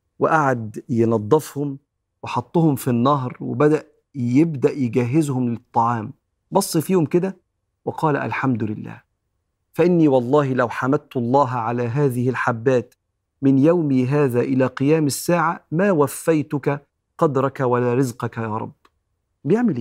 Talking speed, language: 110 wpm, Arabic